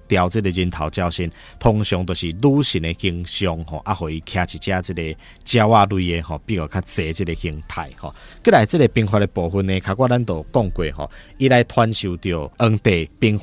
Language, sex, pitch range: Chinese, male, 90-120 Hz